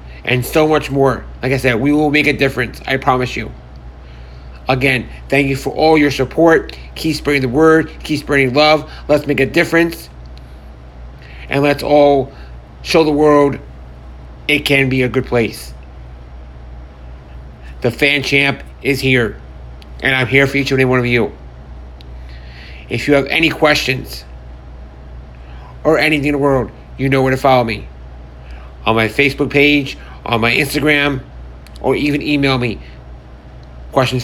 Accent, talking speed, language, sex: American, 155 wpm, English, male